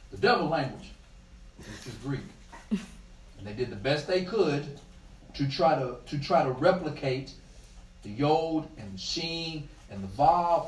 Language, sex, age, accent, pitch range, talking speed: English, male, 40-59, American, 115-165 Hz, 155 wpm